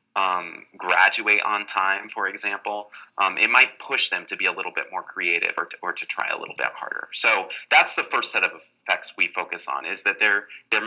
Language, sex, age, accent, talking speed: English, male, 30-49, American, 225 wpm